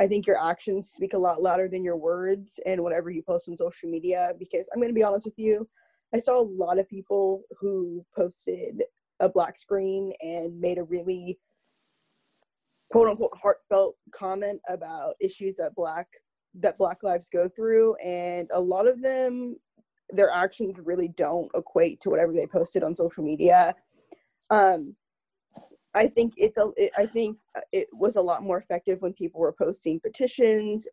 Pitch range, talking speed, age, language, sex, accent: 175-220 Hz, 175 wpm, 20-39, English, female, American